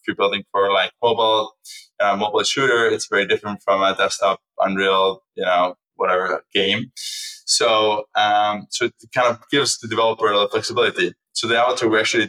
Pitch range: 100-115 Hz